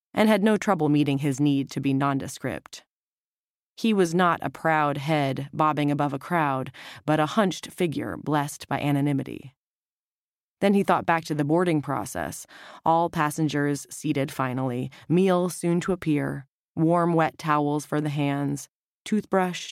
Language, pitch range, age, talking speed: English, 140-180 Hz, 20-39, 150 wpm